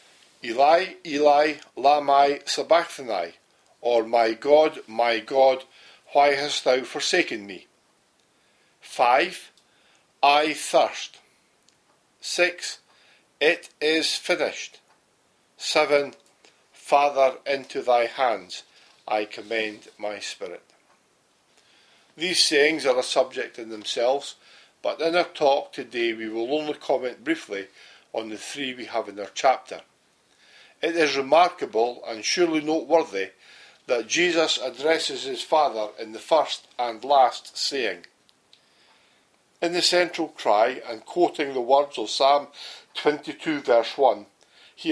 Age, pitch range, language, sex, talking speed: 50-69, 125-160 Hz, English, male, 115 wpm